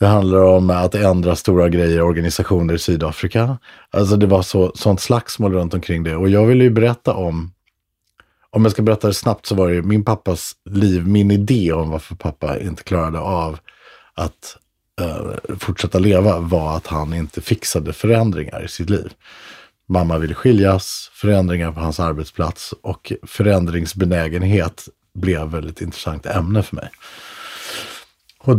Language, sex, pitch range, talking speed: Swedish, male, 85-110 Hz, 155 wpm